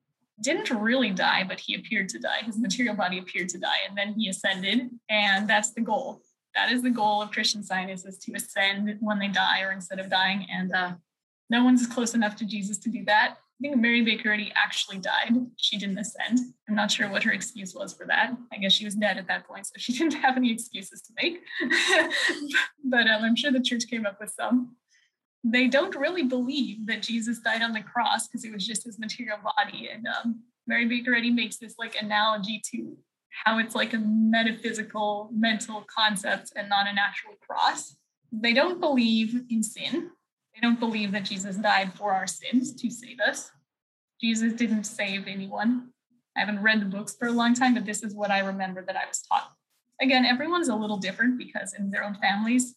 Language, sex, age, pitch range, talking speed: English, female, 10-29, 205-245 Hz, 210 wpm